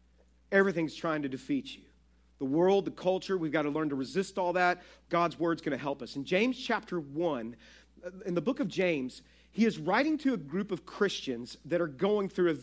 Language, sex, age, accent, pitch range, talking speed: English, male, 40-59, American, 165-225 Hz, 215 wpm